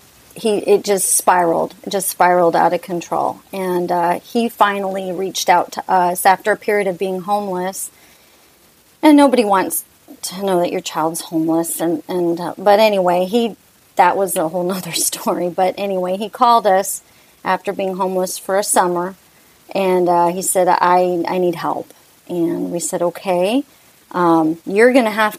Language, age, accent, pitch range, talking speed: English, 30-49, American, 175-215 Hz, 170 wpm